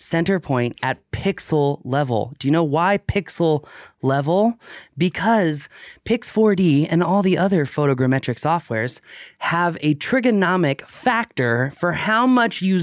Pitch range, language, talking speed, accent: 140-190 Hz, English, 125 wpm, American